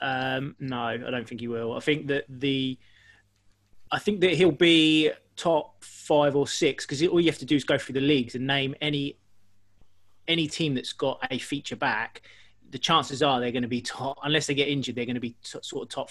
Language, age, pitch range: English, 20-39, 125-150 Hz